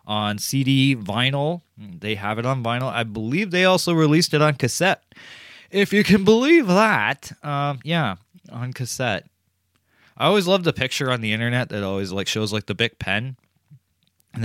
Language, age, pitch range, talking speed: English, 20-39, 100-150 Hz, 175 wpm